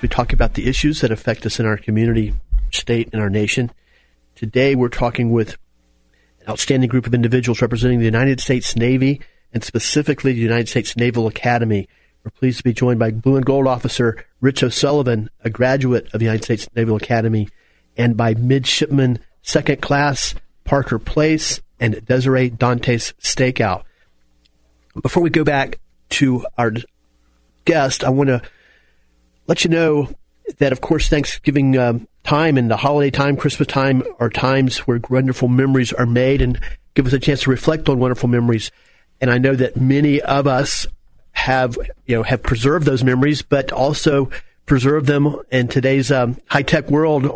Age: 40-59